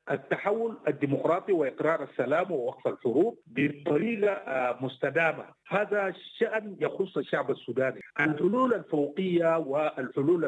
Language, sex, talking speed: English, male, 90 wpm